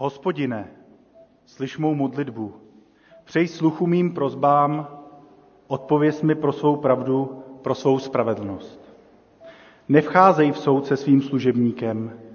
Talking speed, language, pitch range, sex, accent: 105 wpm, Czech, 130-155 Hz, male, native